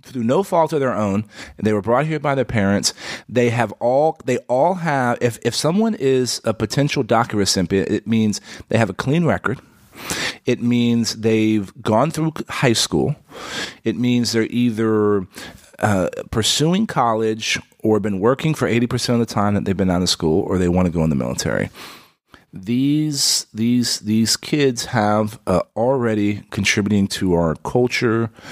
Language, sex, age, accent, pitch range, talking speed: English, male, 40-59, American, 100-120 Hz, 175 wpm